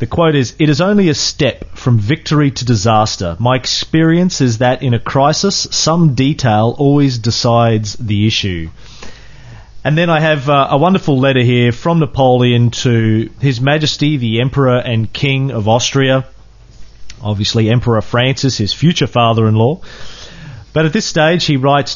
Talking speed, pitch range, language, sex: 160 wpm, 115-150 Hz, English, male